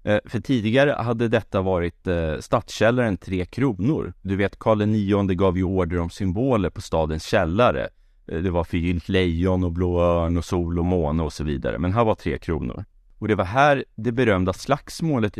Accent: native